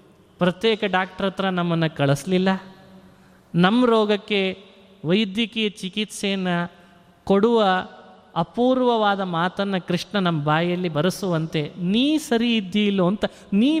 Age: 30-49